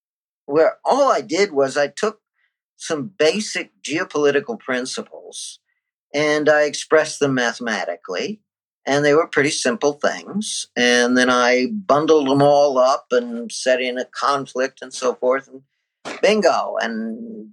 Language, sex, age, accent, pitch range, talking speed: English, male, 50-69, American, 130-170 Hz, 135 wpm